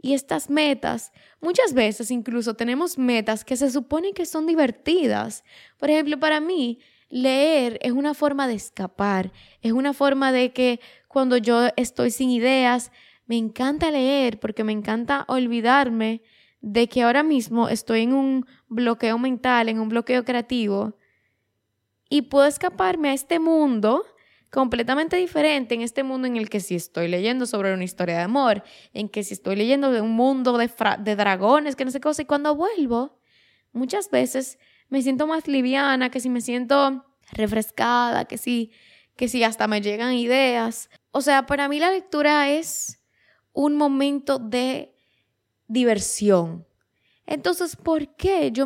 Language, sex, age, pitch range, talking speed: Spanish, female, 10-29, 230-290 Hz, 165 wpm